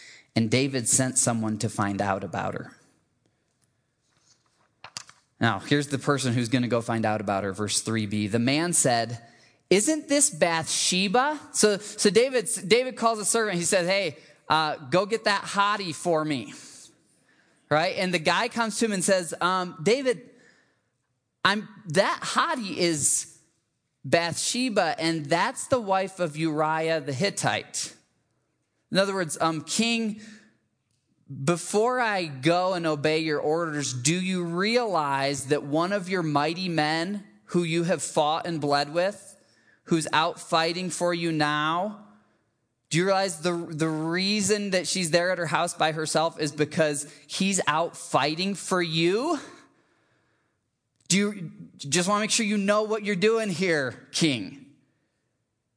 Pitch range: 135-195 Hz